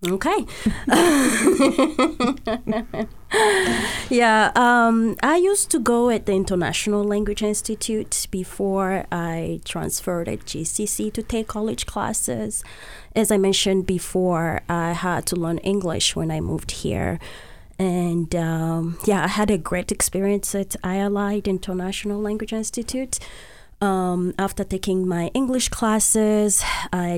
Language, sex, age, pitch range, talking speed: English, female, 20-39, 170-215 Hz, 120 wpm